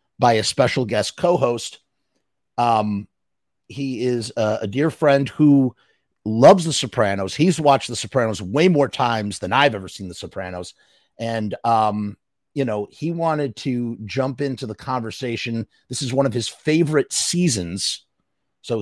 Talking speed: 155 wpm